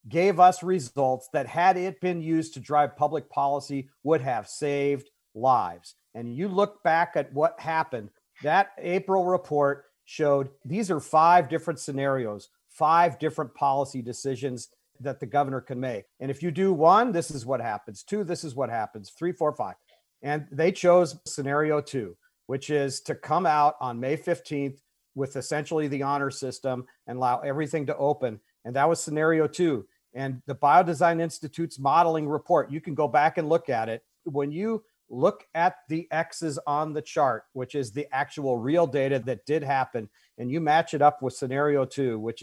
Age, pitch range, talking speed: 50-69, 135-160 Hz, 180 wpm